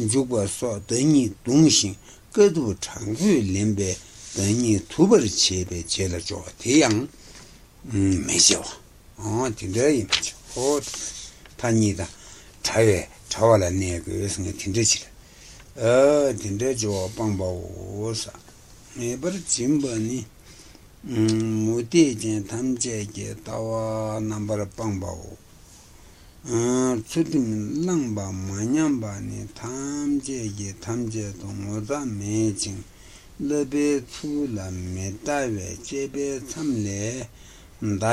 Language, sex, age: Italian, male, 60-79